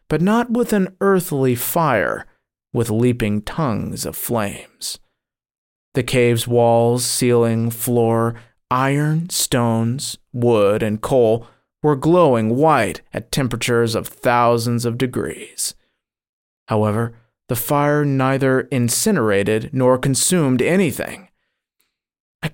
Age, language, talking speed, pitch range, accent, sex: 30-49, English, 105 wpm, 115-135 Hz, American, male